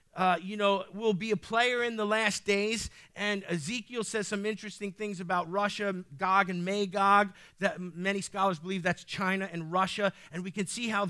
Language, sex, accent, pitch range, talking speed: English, male, American, 180-225 Hz, 190 wpm